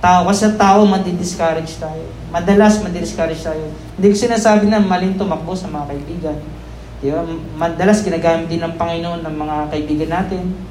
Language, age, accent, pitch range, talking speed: Filipino, 20-39, native, 155-195 Hz, 155 wpm